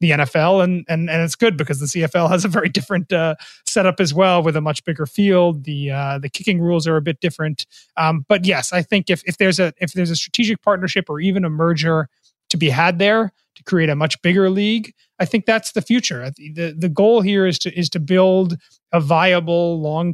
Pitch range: 165-195 Hz